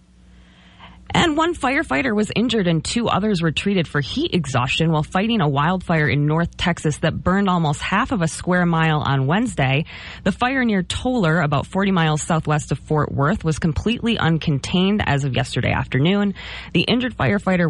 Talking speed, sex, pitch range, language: 175 wpm, female, 145-195 Hz, English